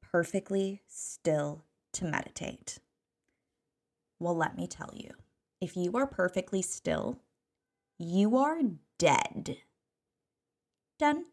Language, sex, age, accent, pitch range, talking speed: English, female, 20-39, American, 170-230 Hz, 95 wpm